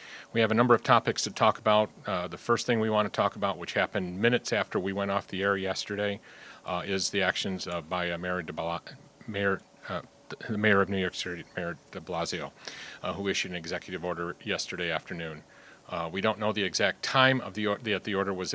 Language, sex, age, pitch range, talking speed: English, male, 40-59, 90-105 Hz, 225 wpm